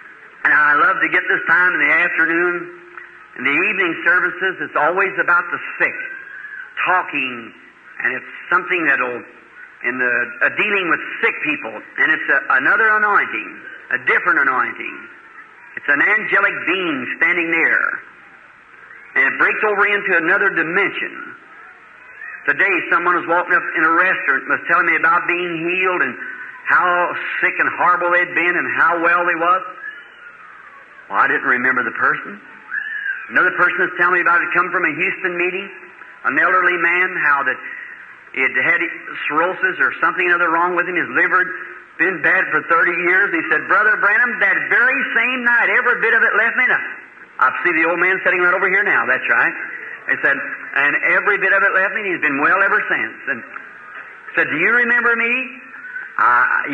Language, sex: English, male